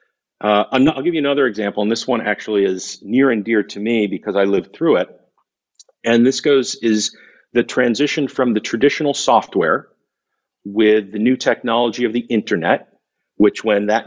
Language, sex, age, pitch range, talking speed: English, male, 50-69, 105-140 Hz, 175 wpm